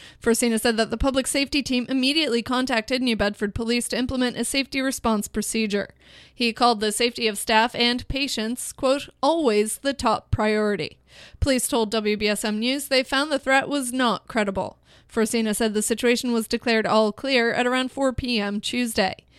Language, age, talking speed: English, 30-49, 170 wpm